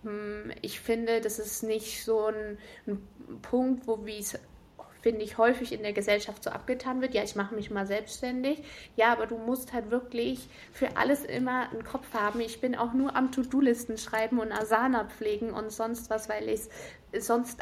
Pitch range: 210-240 Hz